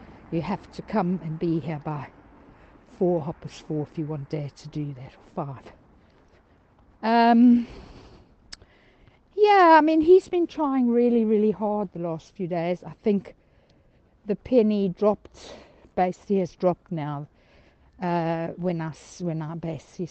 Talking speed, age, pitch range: 145 wpm, 60-79, 165-215 Hz